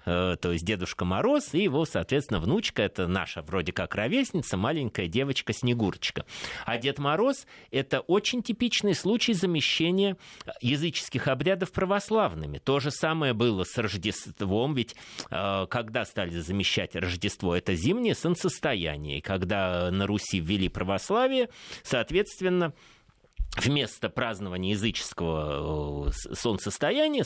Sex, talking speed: male, 110 wpm